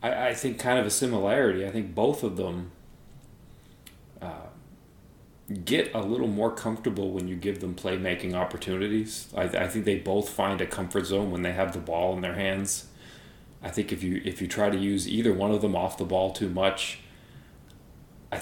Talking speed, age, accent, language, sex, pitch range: 195 wpm, 30-49, American, English, male, 95-110 Hz